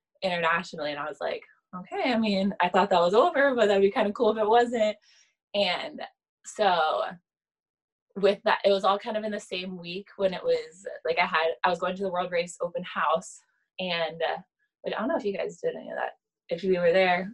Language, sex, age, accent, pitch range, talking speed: English, female, 20-39, American, 180-225 Hz, 230 wpm